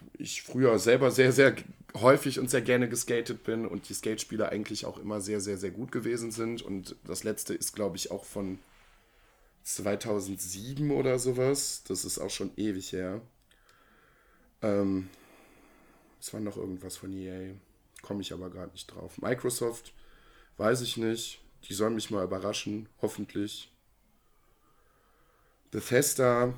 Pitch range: 100-125 Hz